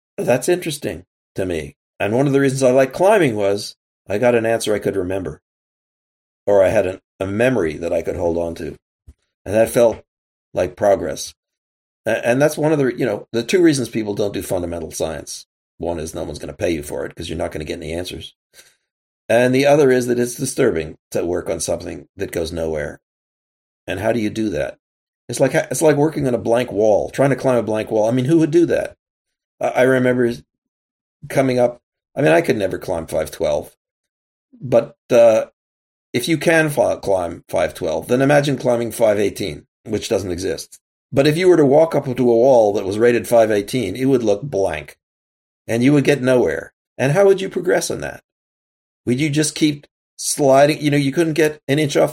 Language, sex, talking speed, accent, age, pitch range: English, male, 205 wpm, American, 40-59, 110-145 Hz